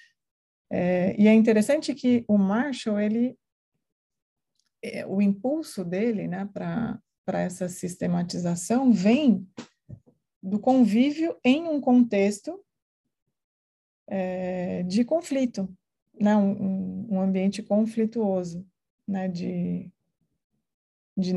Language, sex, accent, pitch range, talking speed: Portuguese, female, Brazilian, 185-230 Hz, 80 wpm